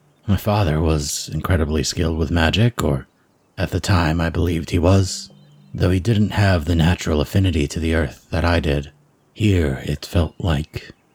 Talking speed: 170 wpm